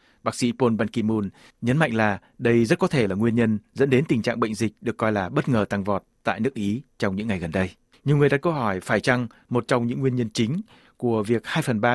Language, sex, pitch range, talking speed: Vietnamese, male, 110-130 Hz, 270 wpm